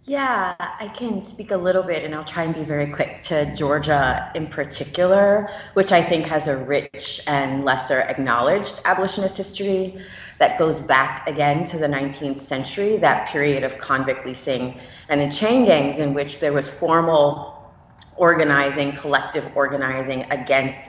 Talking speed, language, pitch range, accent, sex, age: 160 wpm, English, 140-160 Hz, American, female, 30-49